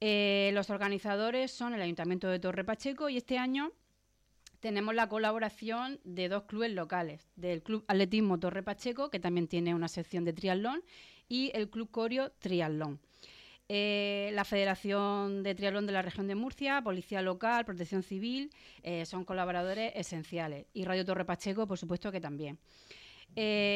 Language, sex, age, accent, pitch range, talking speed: Spanish, female, 30-49, Spanish, 170-215 Hz, 160 wpm